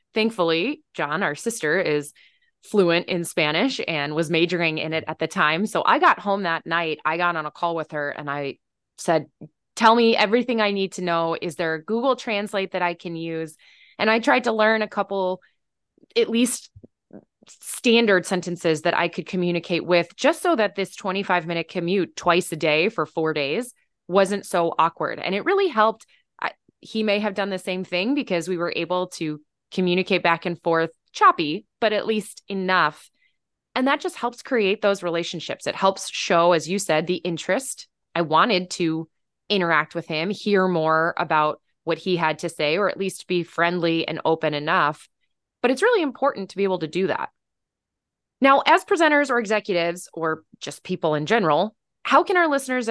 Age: 20-39